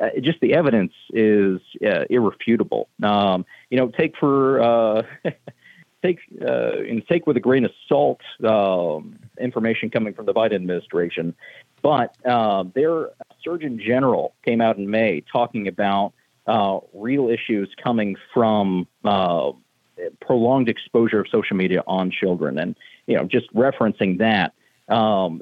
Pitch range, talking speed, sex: 100-130 Hz, 140 wpm, male